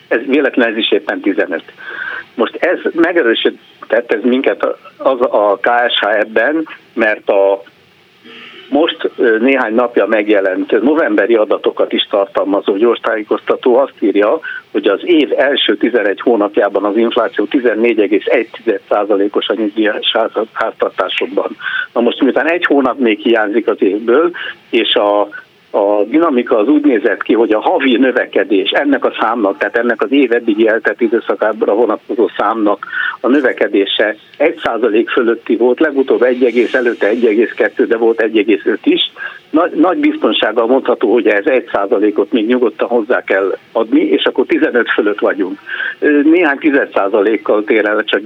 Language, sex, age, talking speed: Hungarian, male, 60-79, 135 wpm